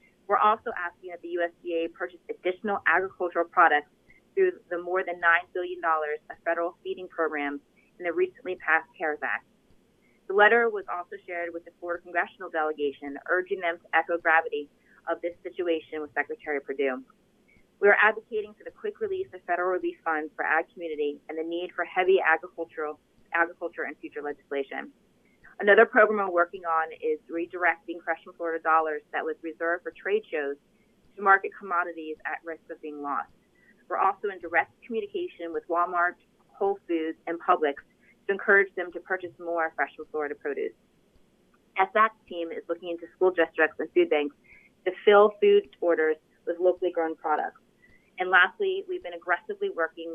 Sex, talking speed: female, 165 wpm